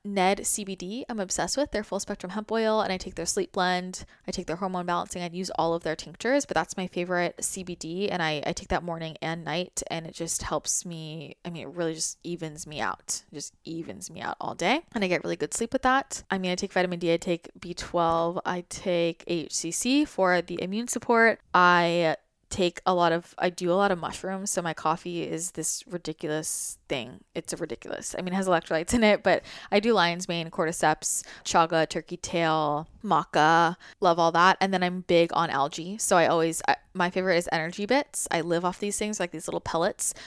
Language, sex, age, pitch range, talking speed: English, female, 20-39, 170-205 Hz, 220 wpm